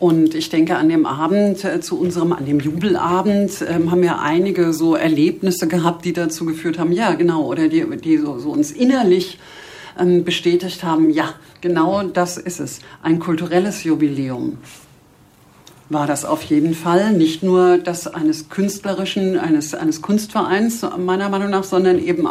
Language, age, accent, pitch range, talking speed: German, 50-69, German, 160-195 Hz, 155 wpm